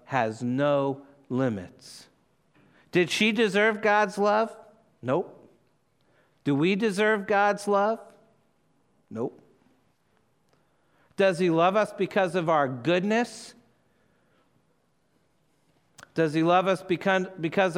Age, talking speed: 50-69, 95 wpm